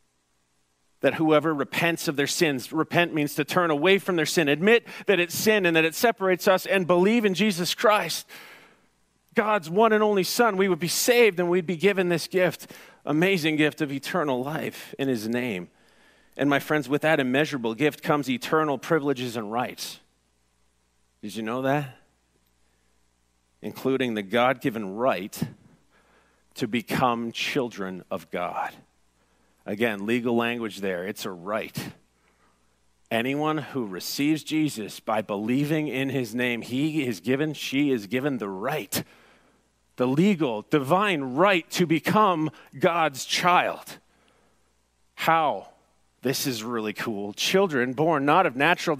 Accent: American